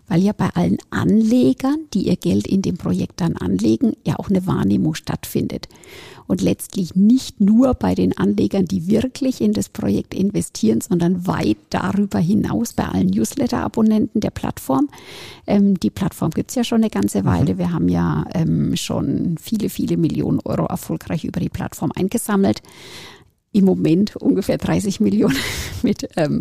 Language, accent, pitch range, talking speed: German, German, 185-230 Hz, 160 wpm